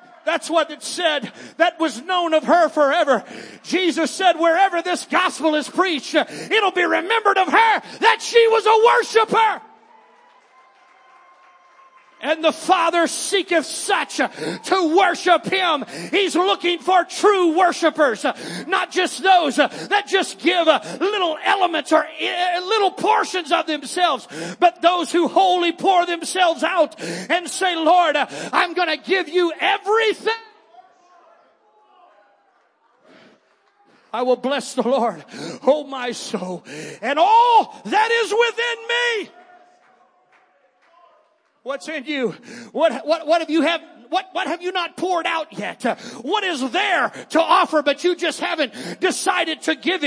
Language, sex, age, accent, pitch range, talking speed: English, male, 40-59, American, 315-375 Hz, 135 wpm